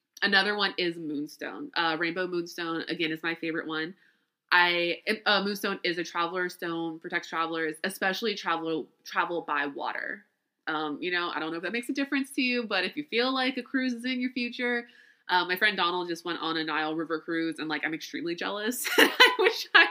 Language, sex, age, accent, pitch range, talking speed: English, female, 20-39, American, 160-210 Hz, 210 wpm